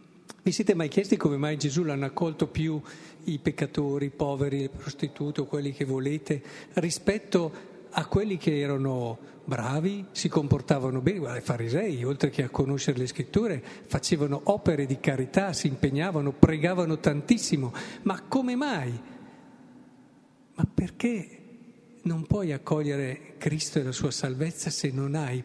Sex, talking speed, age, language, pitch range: male, 145 wpm, 50-69, Italian, 140-180 Hz